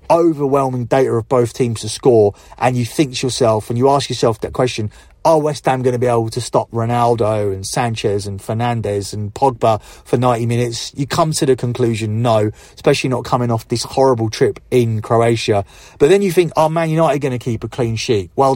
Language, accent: English, British